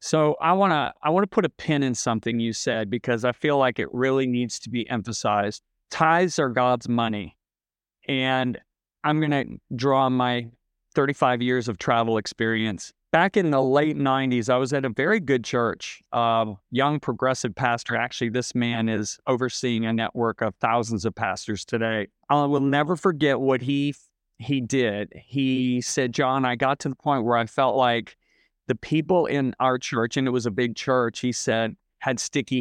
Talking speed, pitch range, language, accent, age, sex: 190 wpm, 115-135 Hz, English, American, 40-59, male